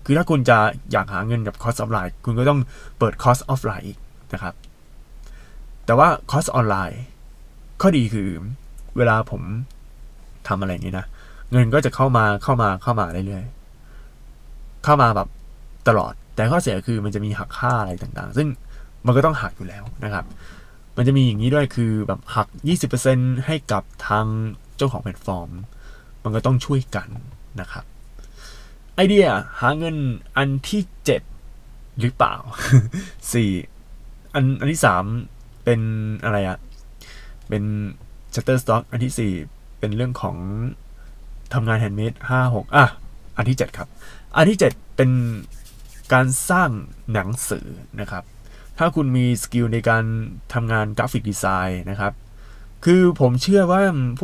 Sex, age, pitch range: male, 20-39, 105-135 Hz